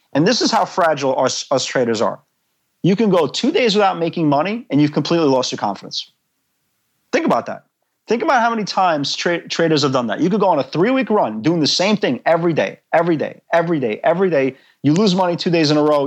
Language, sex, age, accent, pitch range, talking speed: English, male, 40-59, American, 130-170 Hz, 230 wpm